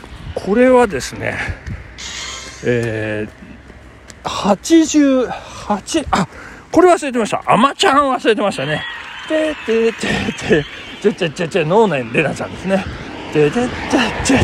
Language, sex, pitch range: Japanese, male, 165-275 Hz